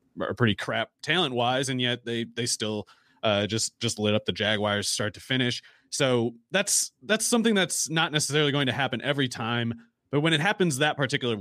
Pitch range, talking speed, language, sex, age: 110-145 Hz, 200 wpm, English, male, 30-49